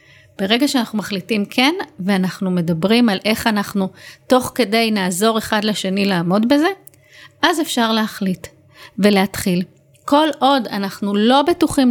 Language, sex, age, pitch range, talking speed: English, female, 30-49, 195-250 Hz, 125 wpm